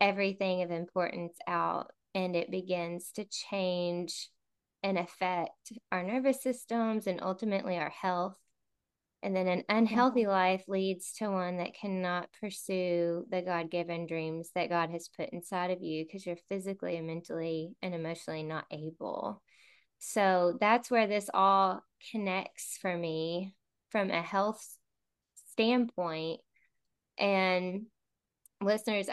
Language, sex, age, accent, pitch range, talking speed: English, female, 10-29, American, 175-195 Hz, 130 wpm